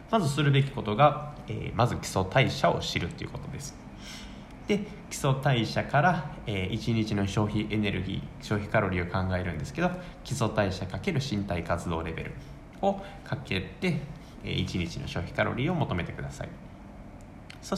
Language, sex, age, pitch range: Japanese, male, 20-39, 95-145 Hz